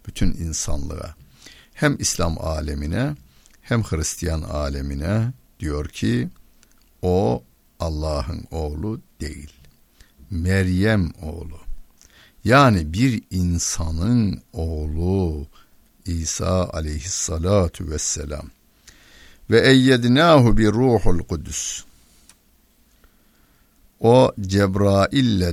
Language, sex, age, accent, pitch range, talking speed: Turkish, male, 60-79, native, 75-100 Hz, 70 wpm